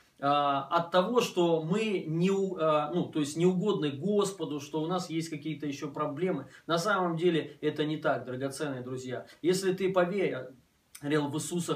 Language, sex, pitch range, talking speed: Russian, male, 150-185 Hz, 145 wpm